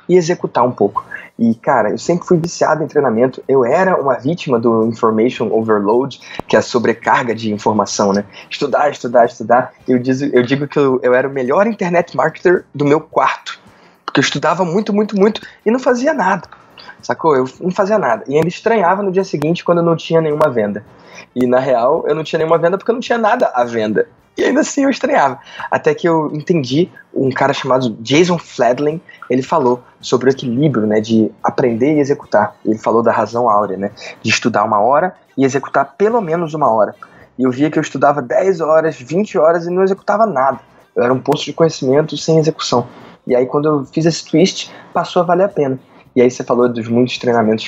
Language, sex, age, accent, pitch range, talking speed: Portuguese, male, 20-39, Brazilian, 125-175 Hz, 210 wpm